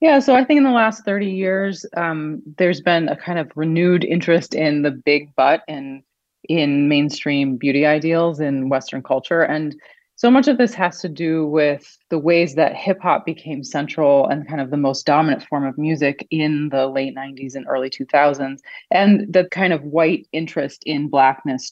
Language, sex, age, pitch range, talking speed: English, female, 30-49, 135-165 Hz, 190 wpm